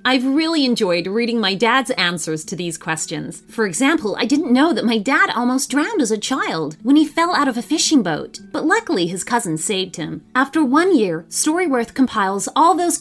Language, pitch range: English, 185-300 Hz